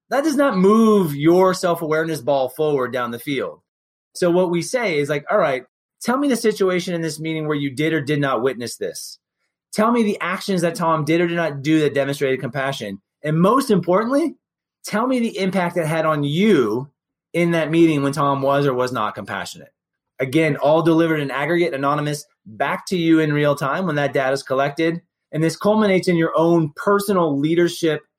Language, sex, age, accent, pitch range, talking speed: English, male, 30-49, American, 140-185 Hz, 200 wpm